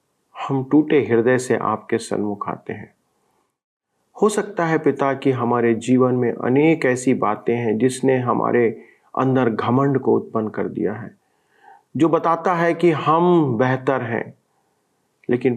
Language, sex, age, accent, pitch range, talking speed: Hindi, male, 40-59, native, 120-165 Hz, 145 wpm